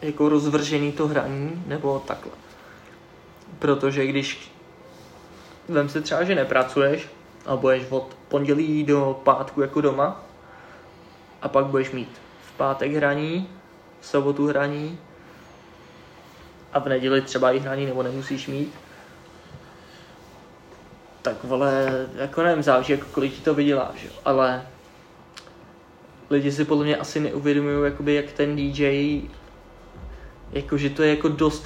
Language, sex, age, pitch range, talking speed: Czech, male, 20-39, 135-150 Hz, 120 wpm